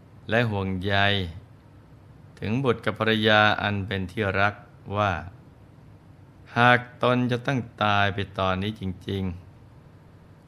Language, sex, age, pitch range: Thai, male, 20-39, 95-115 Hz